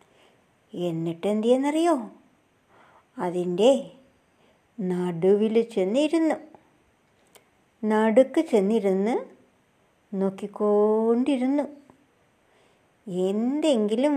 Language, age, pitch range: Malayalam, 60-79, 200-280 Hz